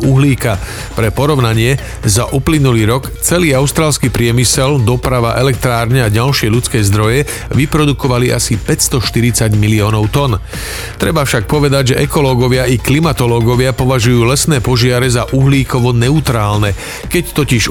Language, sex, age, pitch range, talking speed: Slovak, male, 40-59, 115-140 Hz, 120 wpm